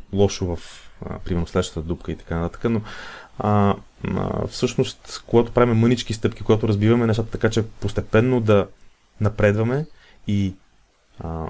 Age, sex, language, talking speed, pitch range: 30-49, male, Bulgarian, 140 wpm, 95-120 Hz